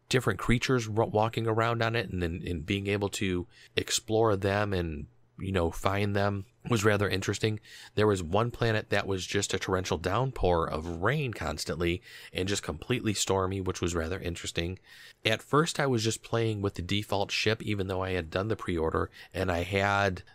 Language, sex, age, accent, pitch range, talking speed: English, male, 30-49, American, 90-110 Hz, 185 wpm